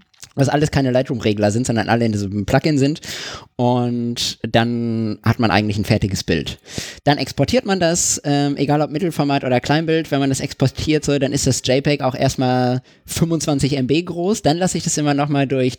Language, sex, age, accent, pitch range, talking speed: German, male, 20-39, German, 115-145 Hz, 190 wpm